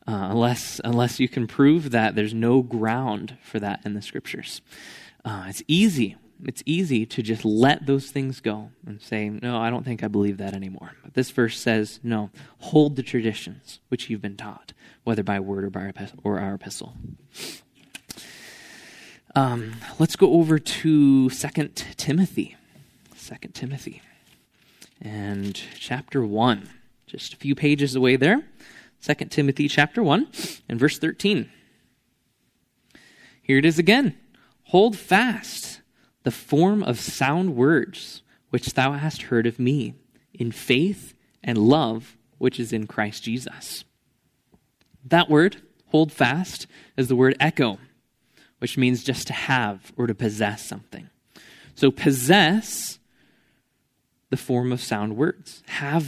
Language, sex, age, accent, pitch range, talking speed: English, male, 20-39, American, 115-150 Hz, 145 wpm